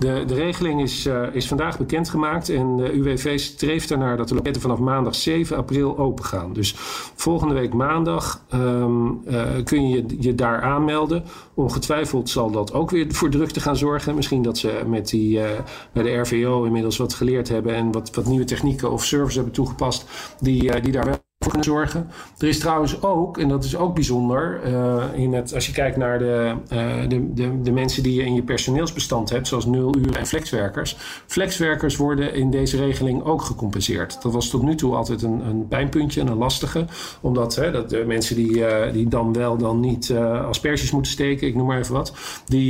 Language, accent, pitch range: Dutch, Dutch, 120-140 Hz